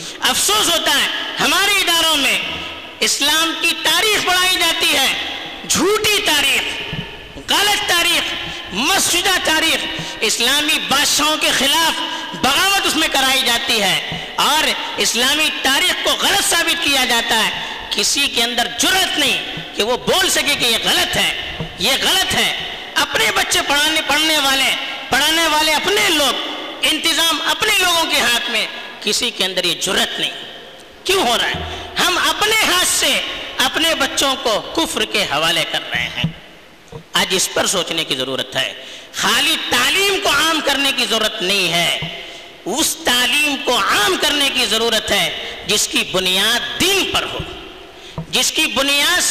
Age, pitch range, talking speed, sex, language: 50-69, 240-345 Hz, 150 wpm, female, Urdu